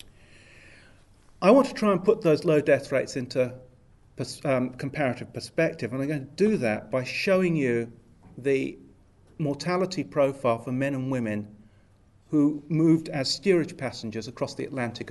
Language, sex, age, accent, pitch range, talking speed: English, male, 40-59, British, 110-140 Hz, 150 wpm